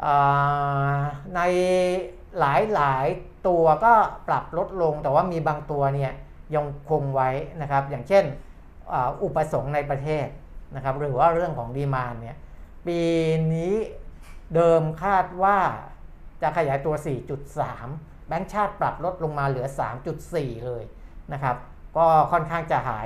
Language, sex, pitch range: Thai, male, 130-160 Hz